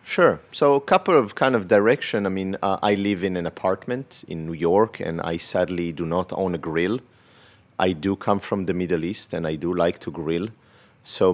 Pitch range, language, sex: 85-100 Hz, English, male